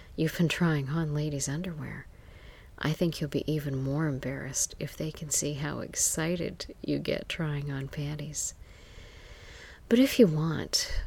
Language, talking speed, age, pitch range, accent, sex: English, 150 wpm, 40-59, 135-165 Hz, American, female